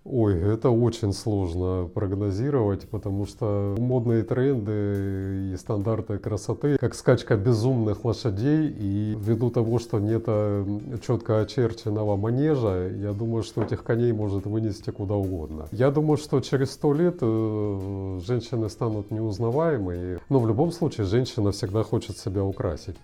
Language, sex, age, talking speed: Russian, male, 30-49, 135 wpm